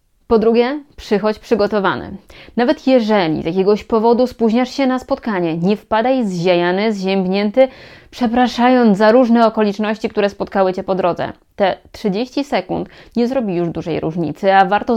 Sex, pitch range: female, 185-235 Hz